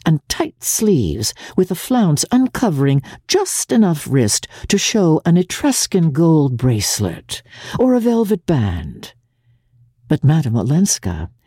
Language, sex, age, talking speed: English, female, 60-79, 120 wpm